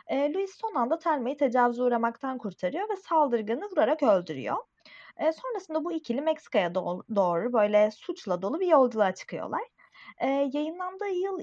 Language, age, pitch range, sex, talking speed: Turkish, 30-49, 210-295 Hz, female, 125 wpm